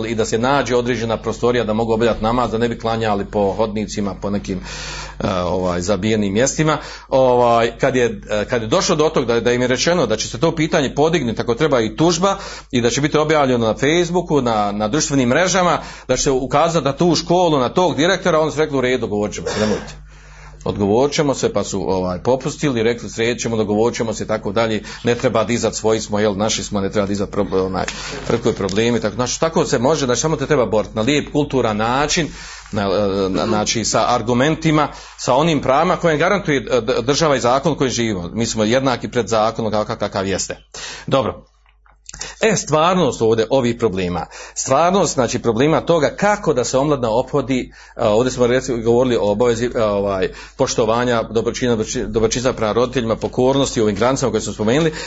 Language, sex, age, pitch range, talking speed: Croatian, male, 40-59, 110-155 Hz, 185 wpm